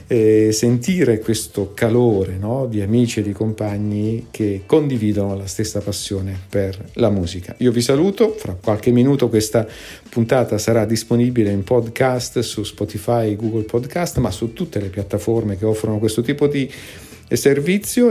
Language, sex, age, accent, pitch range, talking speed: Italian, male, 50-69, native, 100-125 Hz, 145 wpm